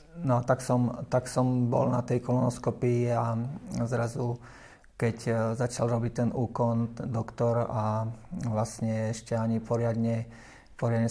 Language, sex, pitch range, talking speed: Slovak, male, 110-120 Hz, 120 wpm